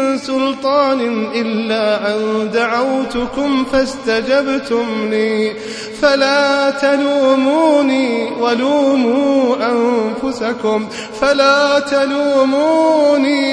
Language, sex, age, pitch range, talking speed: Arabic, male, 30-49, 220-270 Hz, 55 wpm